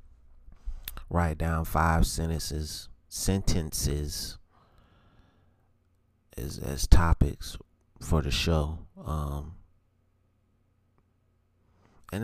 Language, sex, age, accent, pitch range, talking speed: English, male, 30-49, American, 80-95 Hz, 65 wpm